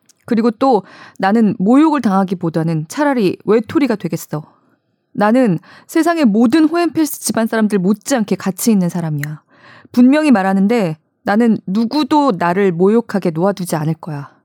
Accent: native